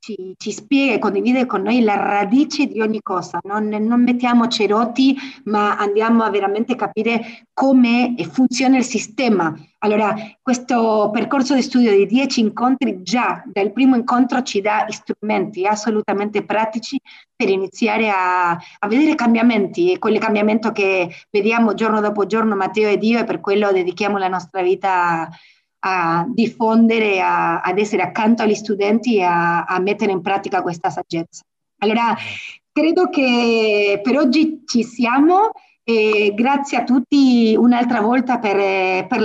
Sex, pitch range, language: female, 205-250 Hz, Italian